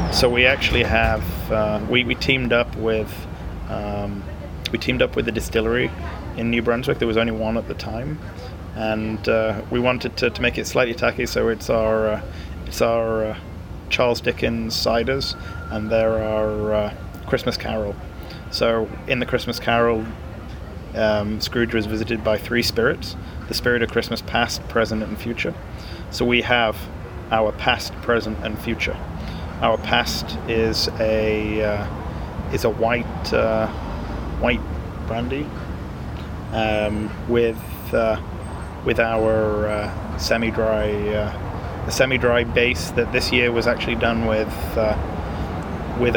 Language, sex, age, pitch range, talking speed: English, male, 20-39, 90-115 Hz, 145 wpm